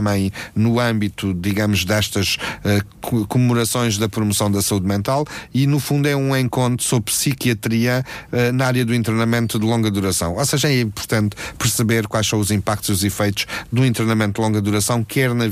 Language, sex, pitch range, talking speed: Portuguese, male, 105-120 Hz, 175 wpm